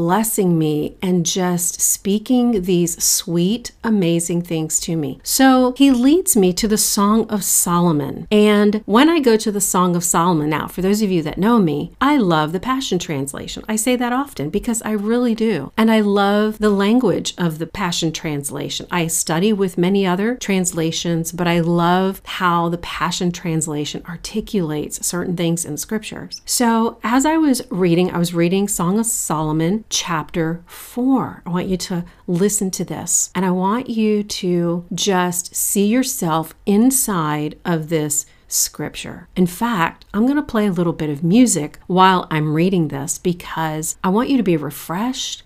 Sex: female